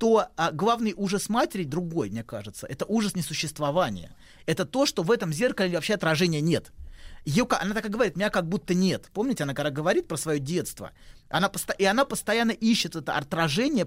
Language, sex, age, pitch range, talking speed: Russian, male, 30-49, 150-205 Hz, 190 wpm